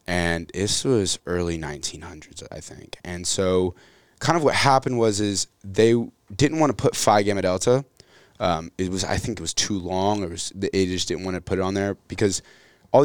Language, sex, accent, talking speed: English, male, American, 210 wpm